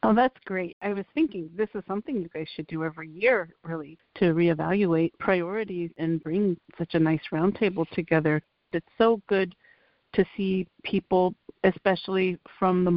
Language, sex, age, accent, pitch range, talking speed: English, female, 50-69, American, 165-200 Hz, 160 wpm